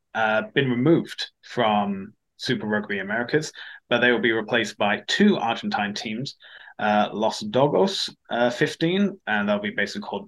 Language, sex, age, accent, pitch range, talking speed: English, male, 20-39, British, 105-140 Hz, 150 wpm